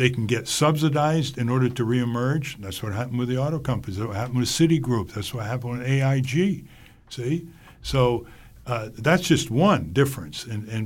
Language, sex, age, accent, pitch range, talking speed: English, male, 60-79, American, 120-145 Hz, 190 wpm